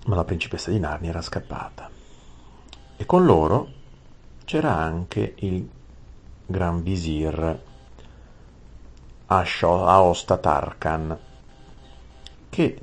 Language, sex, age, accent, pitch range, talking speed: Italian, male, 50-69, native, 65-95 Hz, 85 wpm